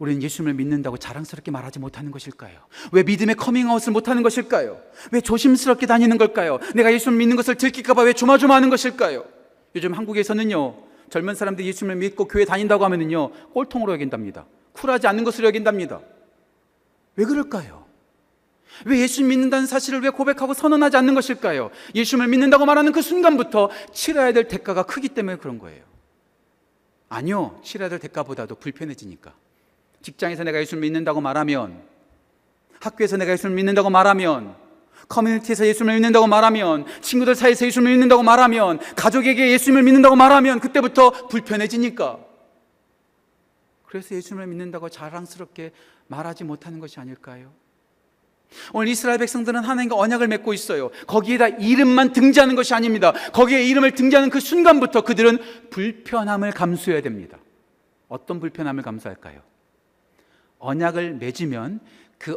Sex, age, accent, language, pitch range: male, 40-59, native, Korean, 165-250 Hz